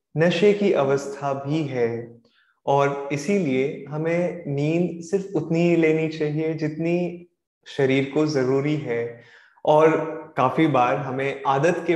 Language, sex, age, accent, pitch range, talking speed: Hindi, male, 20-39, native, 135-160 Hz, 125 wpm